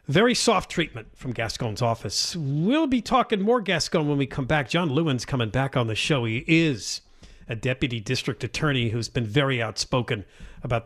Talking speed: 180 wpm